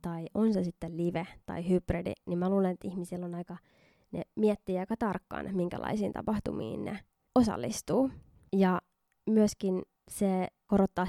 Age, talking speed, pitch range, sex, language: 20-39, 140 wpm, 175-205 Hz, female, Finnish